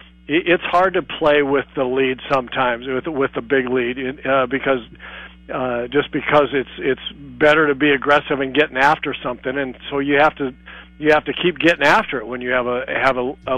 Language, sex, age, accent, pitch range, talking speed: English, male, 50-69, American, 130-155 Hz, 210 wpm